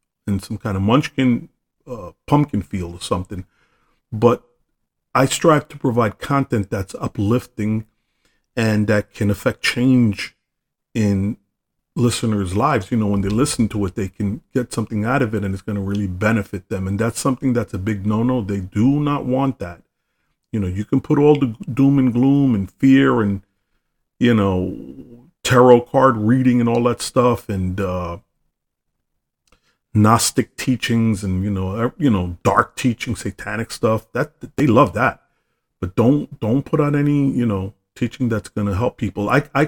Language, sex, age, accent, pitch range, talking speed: English, male, 40-59, American, 100-125 Hz, 170 wpm